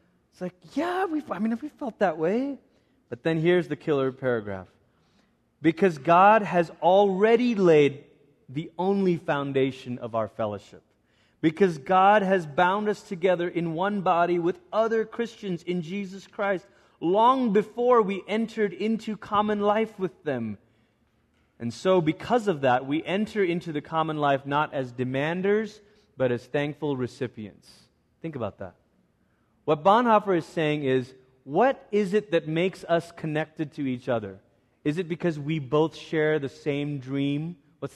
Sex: male